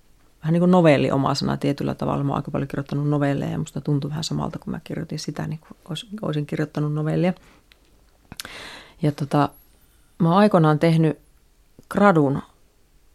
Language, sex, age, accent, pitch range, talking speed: Finnish, female, 30-49, native, 140-165 Hz, 160 wpm